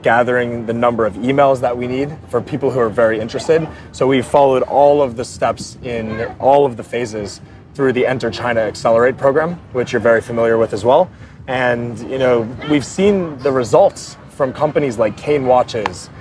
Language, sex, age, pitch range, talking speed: English, male, 30-49, 115-140 Hz, 190 wpm